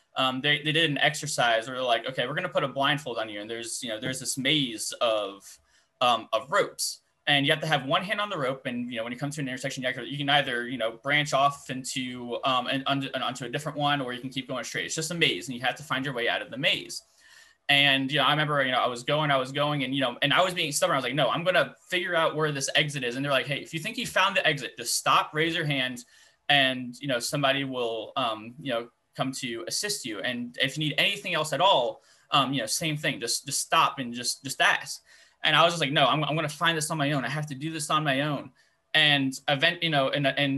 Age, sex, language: 10-29, male, English